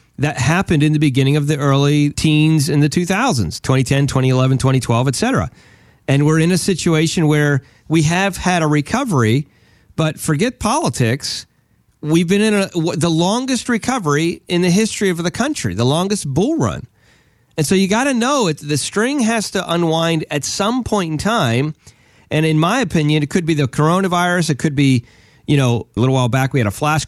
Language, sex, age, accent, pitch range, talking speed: English, male, 40-59, American, 120-170 Hz, 190 wpm